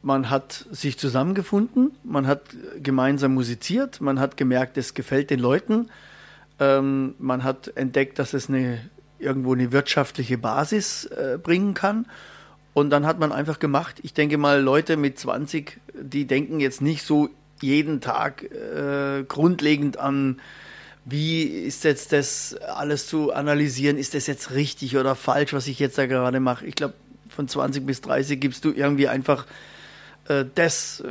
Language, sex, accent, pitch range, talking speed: German, male, German, 135-150 Hz, 150 wpm